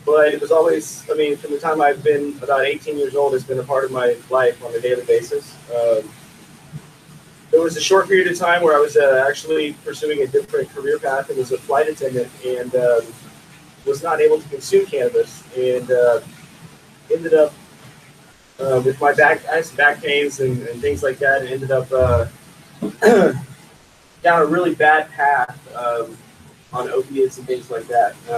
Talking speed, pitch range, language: 185 wpm, 130-190 Hz, English